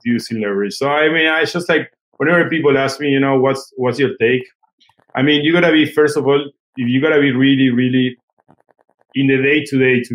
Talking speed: 220 wpm